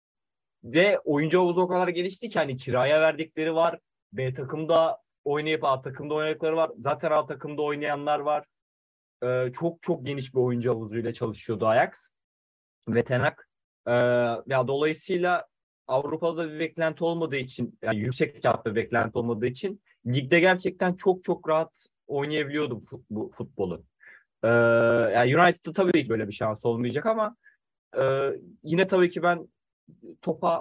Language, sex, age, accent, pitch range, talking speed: Turkish, male, 30-49, native, 125-165 Hz, 145 wpm